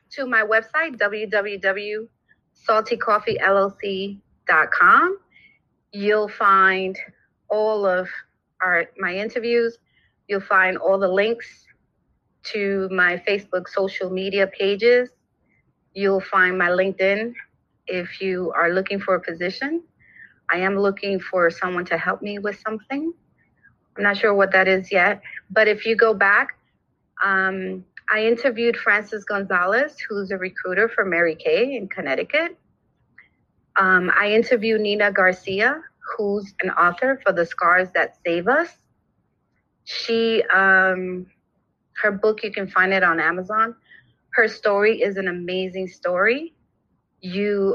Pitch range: 185-220 Hz